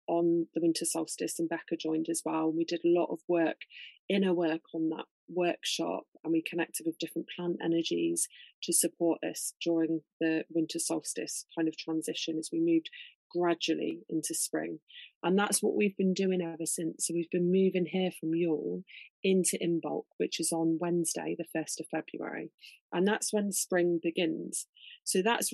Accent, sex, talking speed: British, female, 175 wpm